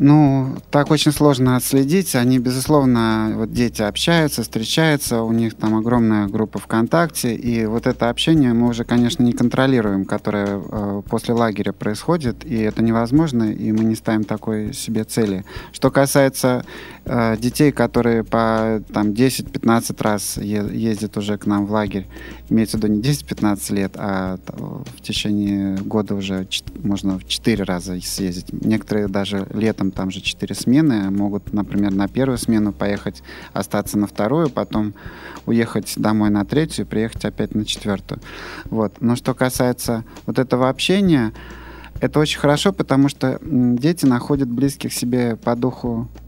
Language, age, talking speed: Russian, 30-49, 155 wpm